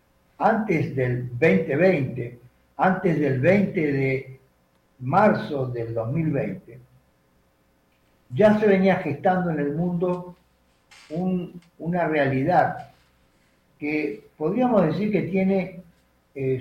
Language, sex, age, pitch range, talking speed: Spanish, male, 50-69, 120-180 Hz, 90 wpm